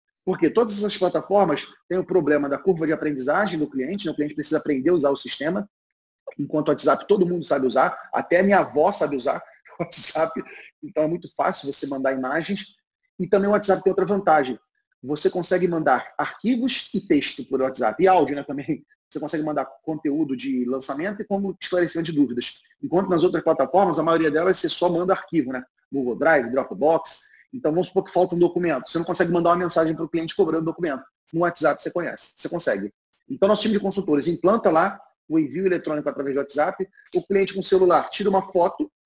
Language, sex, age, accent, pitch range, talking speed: Portuguese, male, 30-49, Brazilian, 150-190 Hz, 205 wpm